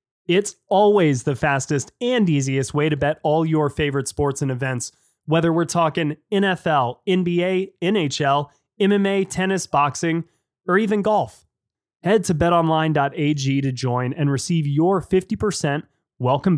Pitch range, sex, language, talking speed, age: 125-165 Hz, male, English, 135 wpm, 20-39